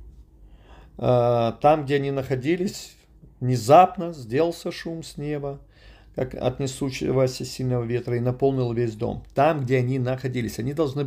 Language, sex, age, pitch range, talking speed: Russian, male, 40-59, 130-180 Hz, 130 wpm